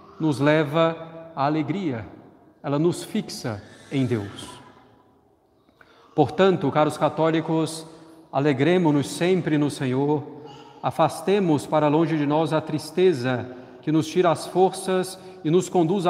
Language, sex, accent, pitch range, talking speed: Portuguese, male, Brazilian, 140-175 Hz, 115 wpm